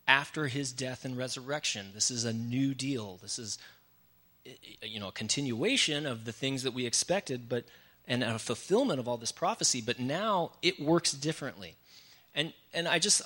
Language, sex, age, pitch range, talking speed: English, male, 30-49, 125-175 Hz, 175 wpm